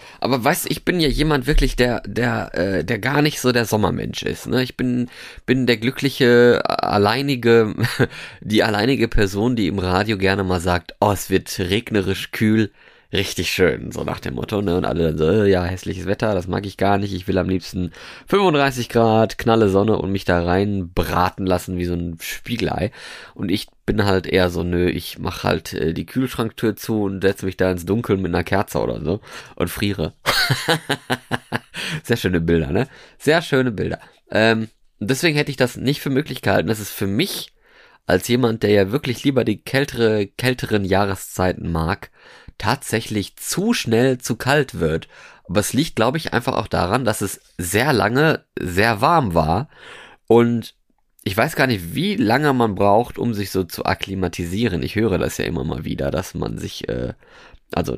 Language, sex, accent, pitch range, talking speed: German, male, German, 95-125 Hz, 185 wpm